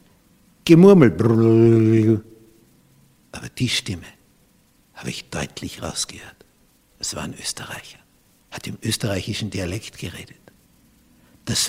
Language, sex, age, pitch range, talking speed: German, male, 60-79, 105-130 Hz, 85 wpm